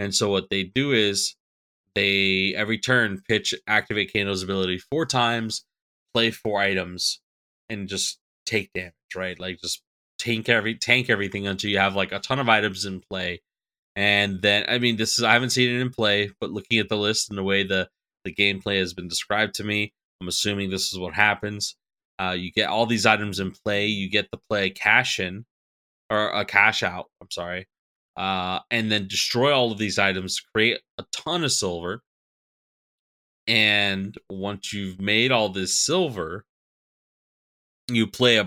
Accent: American